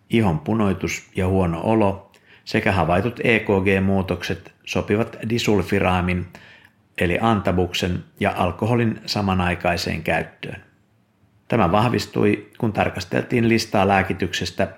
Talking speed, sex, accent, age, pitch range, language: 90 wpm, male, native, 50-69, 90-105 Hz, Finnish